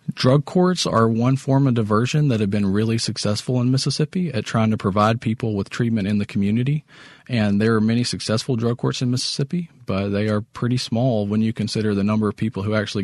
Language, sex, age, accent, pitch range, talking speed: English, male, 40-59, American, 100-120 Hz, 215 wpm